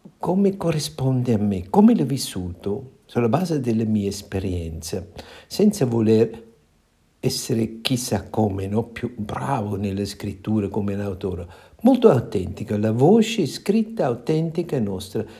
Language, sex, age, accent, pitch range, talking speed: Italian, male, 60-79, native, 100-155 Hz, 125 wpm